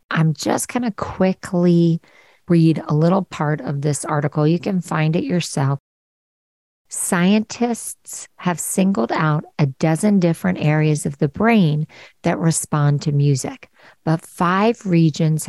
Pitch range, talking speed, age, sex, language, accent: 145-175 Hz, 135 wpm, 50-69, female, English, American